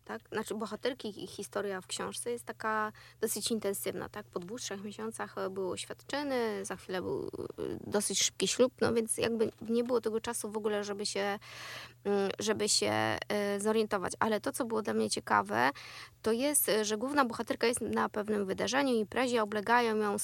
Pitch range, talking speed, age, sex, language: 215-270 Hz, 175 wpm, 20-39, female, Polish